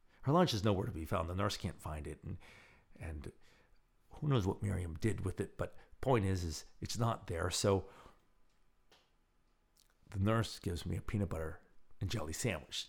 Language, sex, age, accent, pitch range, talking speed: English, male, 50-69, American, 90-125 Hz, 180 wpm